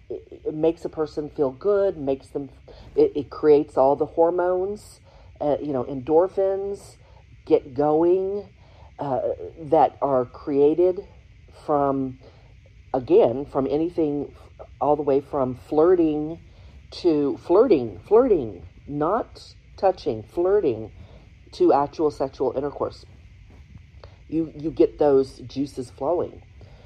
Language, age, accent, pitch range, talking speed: English, 50-69, American, 120-165 Hz, 110 wpm